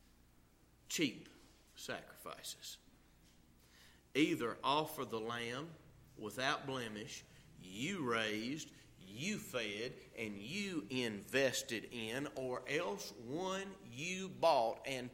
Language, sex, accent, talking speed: English, male, American, 85 wpm